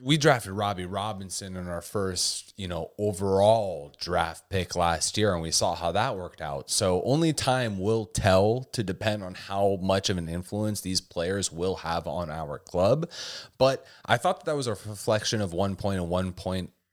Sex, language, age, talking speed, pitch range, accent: male, English, 20-39, 195 wpm, 90-110 Hz, American